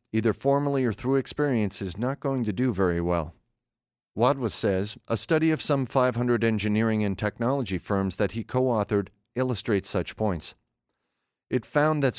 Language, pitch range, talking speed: English, 100-125 Hz, 160 wpm